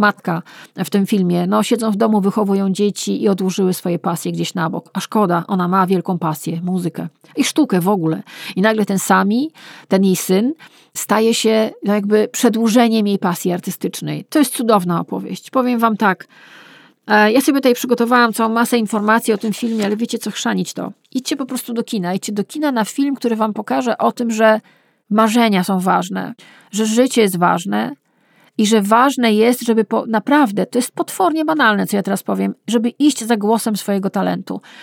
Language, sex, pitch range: Polish, female, 195-240 Hz